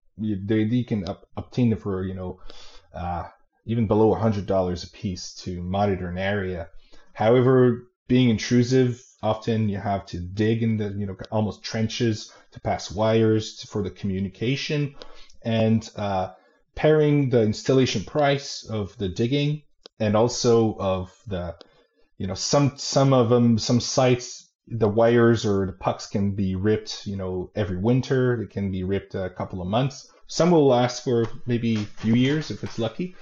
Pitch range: 95-125 Hz